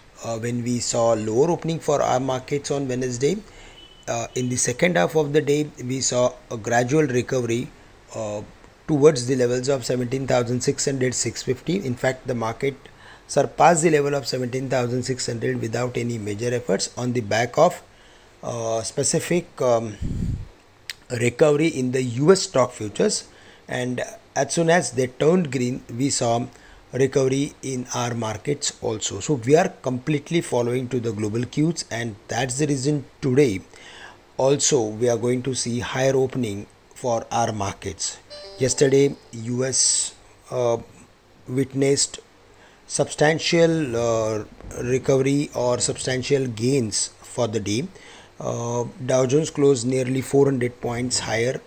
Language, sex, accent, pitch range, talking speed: English, male, Indian, 115-140 Hz, 135 wpm